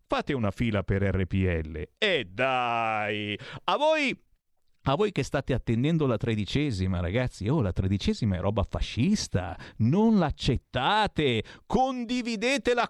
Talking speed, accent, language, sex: 120 wpm, native, Italian, male